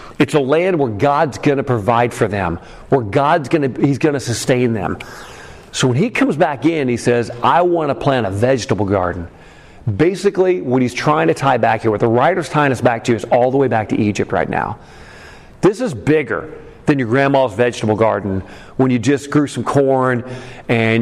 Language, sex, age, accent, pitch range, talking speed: English, male, 40-59, American, 115-150 Hz, 200 wpm